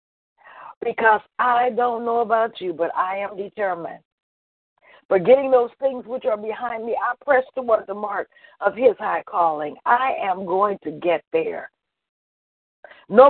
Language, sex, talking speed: English, female, 155 wpm